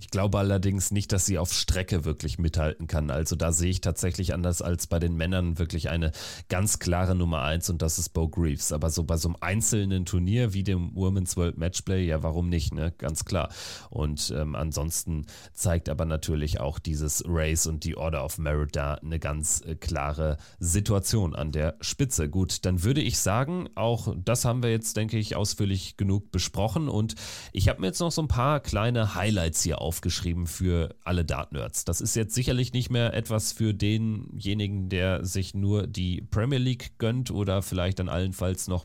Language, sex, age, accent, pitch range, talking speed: German, male, 30-49, German, 85-110 Hz, 190 wpm